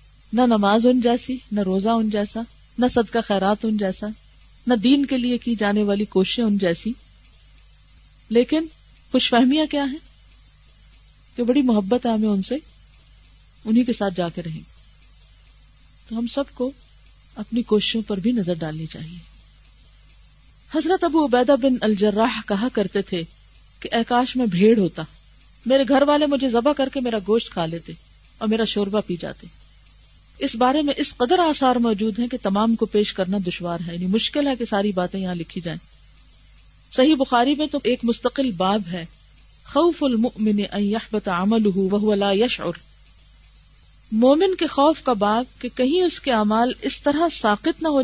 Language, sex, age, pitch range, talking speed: Urdu, female, 40-59, 205-275 Hz, 165 wpm